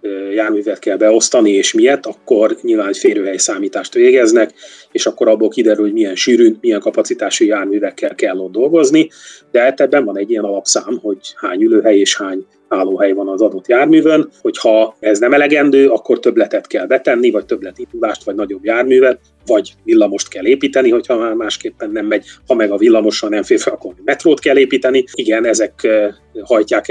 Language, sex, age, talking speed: Hungarian, male, 30-49, 175 wpm